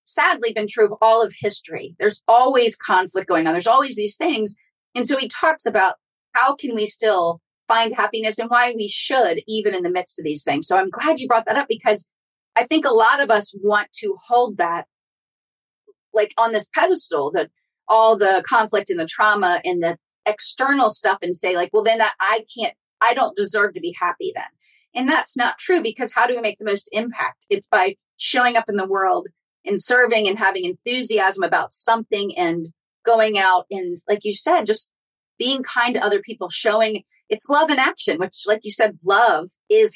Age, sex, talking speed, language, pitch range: 30-49, female, 205 wpm, English, 200-250 Hz